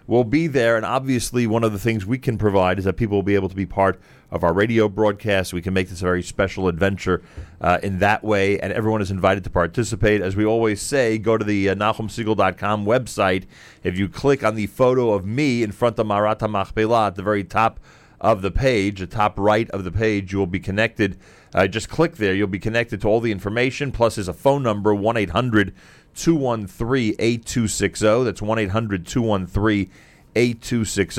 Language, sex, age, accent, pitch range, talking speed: English, male, 40-59, American, 95-115 Hz, 210 wpm